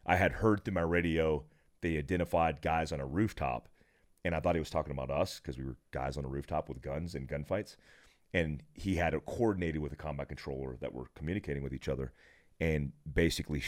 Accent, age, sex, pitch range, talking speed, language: American, 30-49, male, 75-95 Hz, 210 wpm, English